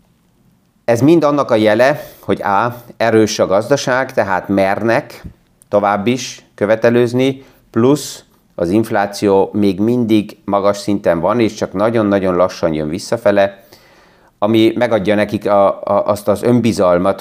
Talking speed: 130 wpm